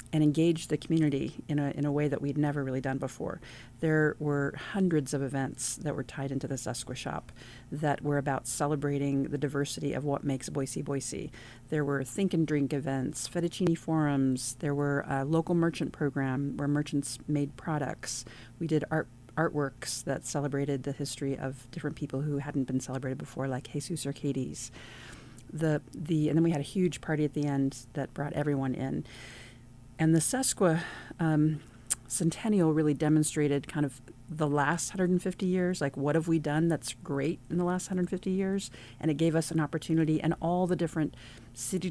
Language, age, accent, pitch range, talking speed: English, 40-59, American, 135-160 Hz, 180 wpm